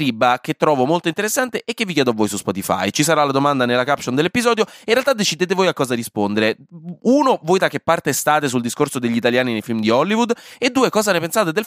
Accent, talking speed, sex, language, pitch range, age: native, 240 wpm, male, Italian, 125-175 Hz, 20-39